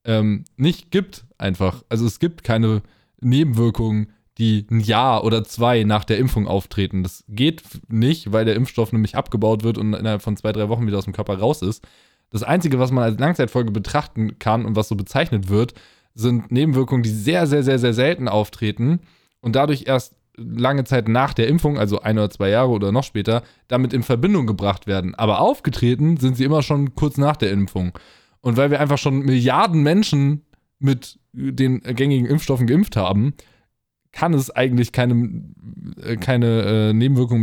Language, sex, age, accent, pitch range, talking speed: German, male, 20-39, German, 110-135 Hz, 180 wpm